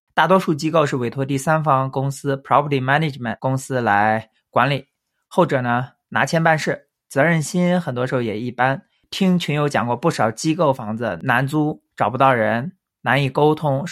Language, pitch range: Chinese, 120-155 Hz